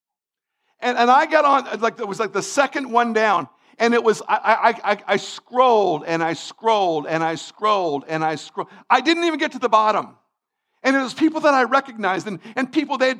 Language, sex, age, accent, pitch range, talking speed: English, male, 50-69, American, 230-280 Hz, 215 wpm